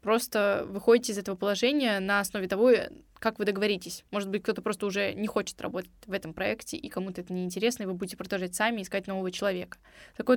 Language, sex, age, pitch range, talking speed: Russian, female, 20-39, 205-235 Hz, 205 wpm